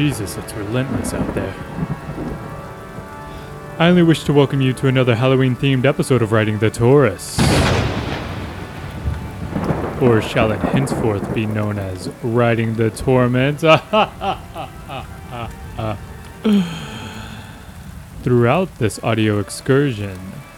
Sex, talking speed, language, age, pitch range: male, 100 wpm, English, 20-39, 105-145 Hz